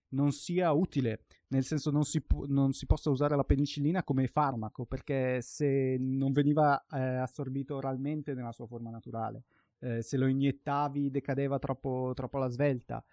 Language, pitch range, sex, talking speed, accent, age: Italian, 120-145 Hz, male, 155 wpm, native, 20-39